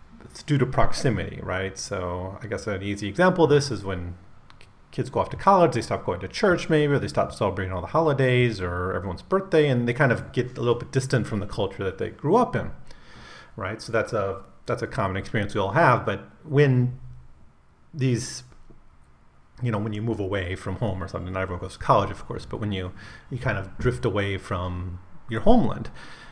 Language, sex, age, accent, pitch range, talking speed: English, male, 30-49, American, 100-135 Hz, 215 wpm